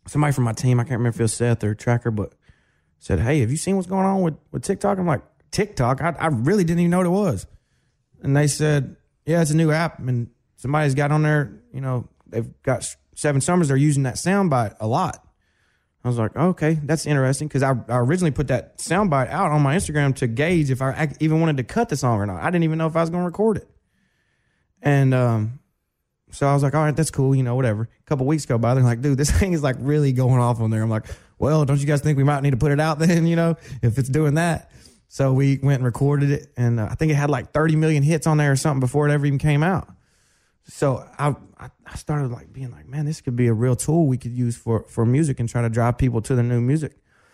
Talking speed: 270 wpm